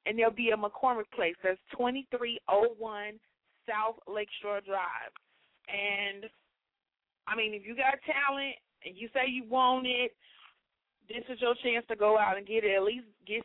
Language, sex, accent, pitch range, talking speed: English, female, American, 205-255 Hz, 165 wpm